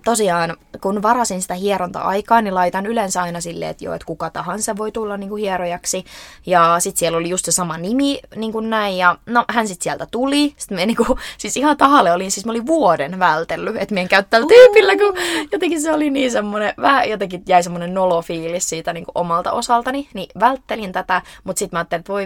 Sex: female